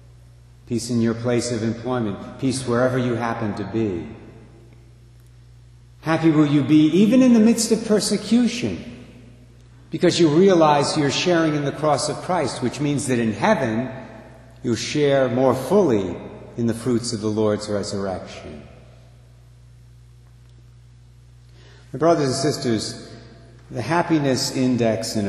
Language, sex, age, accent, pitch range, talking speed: English, male, 60-79, American, 105-140 Hz, 135 wpm